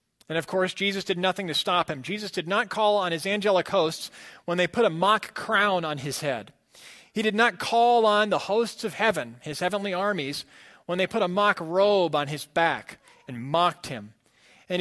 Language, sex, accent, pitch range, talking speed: English, male, American, 155-210 Hz, 205 wpm